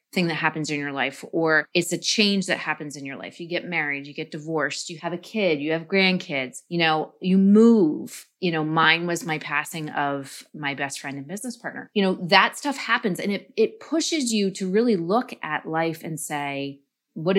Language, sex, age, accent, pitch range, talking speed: English, female, 30-49, American, 155-200 Hz, 215 wpm